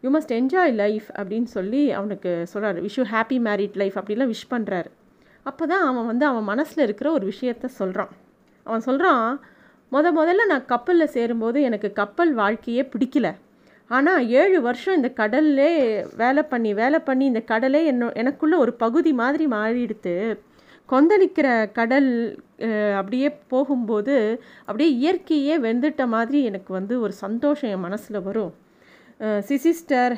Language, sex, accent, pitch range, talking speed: Tamil, female, native, 215-285 Hz, 135 wpm